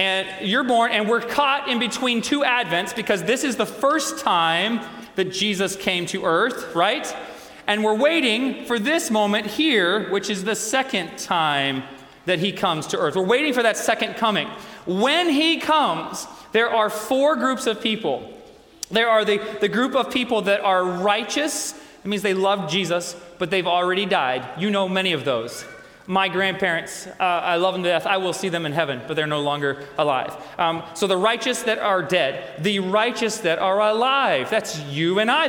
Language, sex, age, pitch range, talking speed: English, male, 30-49, 180-230 Hz, 190 wpm